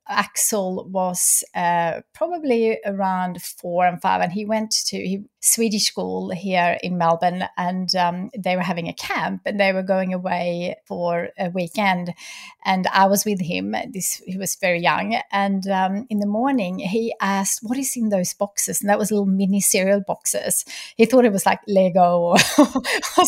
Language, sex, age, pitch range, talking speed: English, female, 30-49, 185-215 Hz, 180 wpm